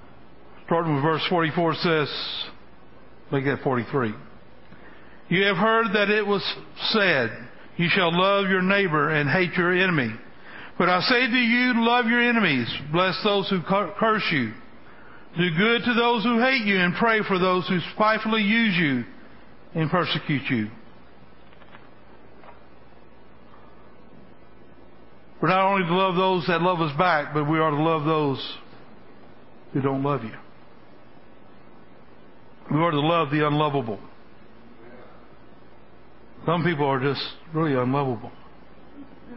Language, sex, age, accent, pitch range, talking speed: English, male, 60-79, American, 140-190 Hz, 135 wpm